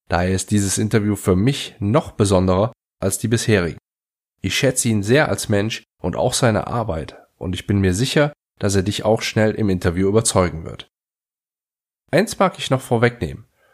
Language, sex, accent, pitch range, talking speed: German, male, German, 100-130 Hz, 175 wpm